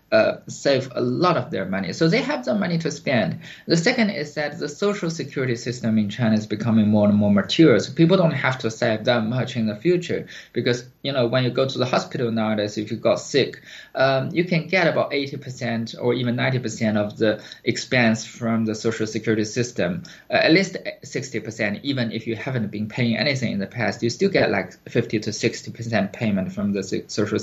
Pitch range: 115-155 Hz